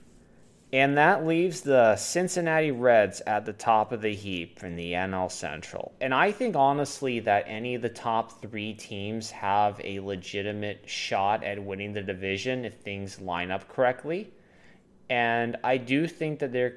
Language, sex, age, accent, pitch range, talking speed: English, male, 20-39, American, 100-125 Hz, 165 wpm